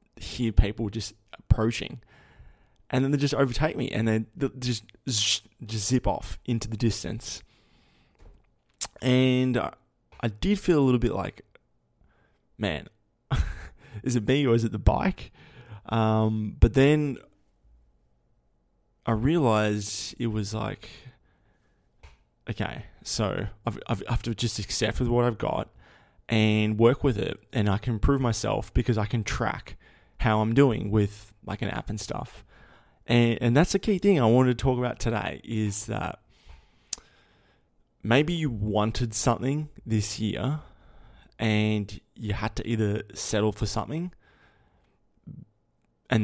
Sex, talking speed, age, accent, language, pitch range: male, 140 wpm, 20-39, Australian, English, 105-125 Hz